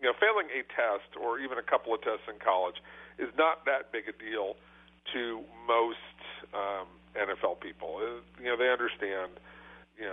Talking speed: 180 wpm